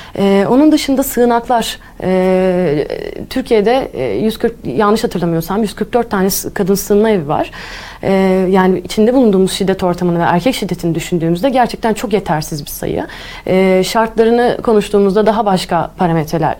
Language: Turkish